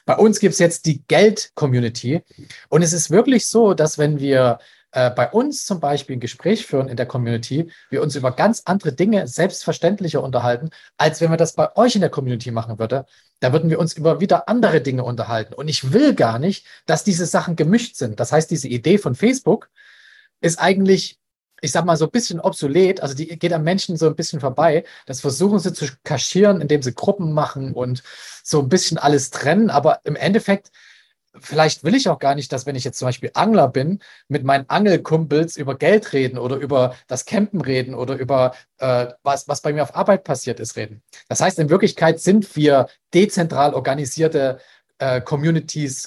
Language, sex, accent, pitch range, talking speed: German, male, German, 130-185 Hz, 200 wpm